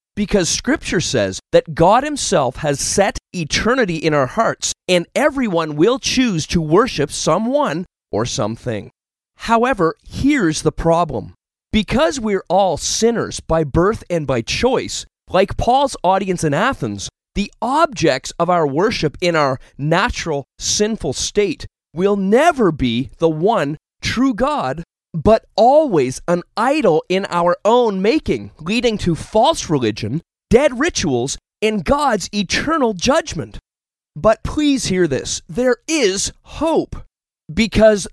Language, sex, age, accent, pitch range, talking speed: English, male, 30-49, American, 155-235 Hz, 130 wpm